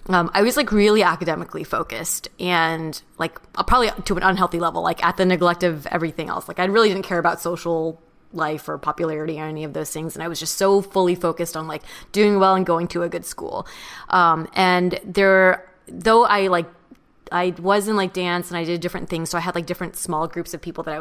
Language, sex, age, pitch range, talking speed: English, female, 20-39, 165-190 Hz, 230 wpm